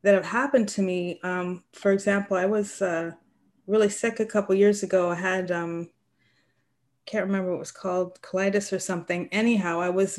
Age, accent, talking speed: 30-49, American, 195 wpm